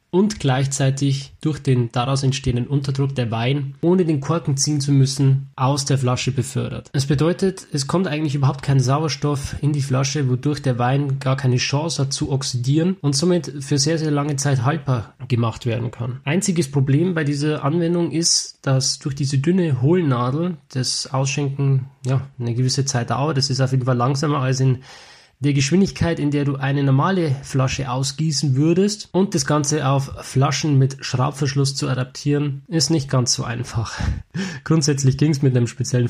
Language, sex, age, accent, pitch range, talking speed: German, male, 20-39, German, 130-155 Hz, 175 wpm